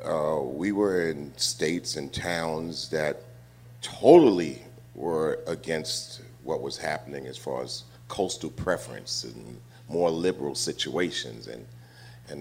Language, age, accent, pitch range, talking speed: English, 40-59, American, 65-100 Hz, 120 wpm